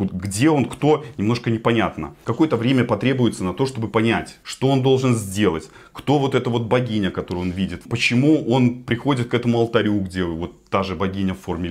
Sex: male